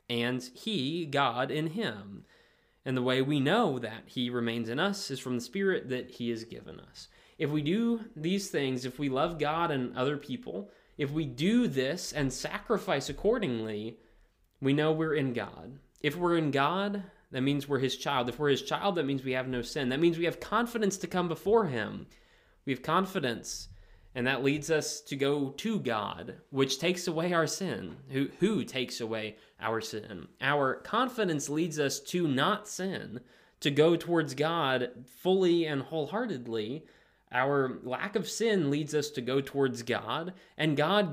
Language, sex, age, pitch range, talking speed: English, male, 20-39, 125-170 Hz, 180 wpm